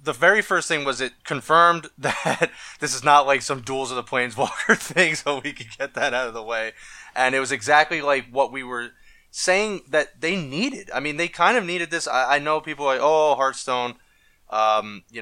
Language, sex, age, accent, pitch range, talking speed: English, male, 20-39, American, 120-155 Hz, 215 wpm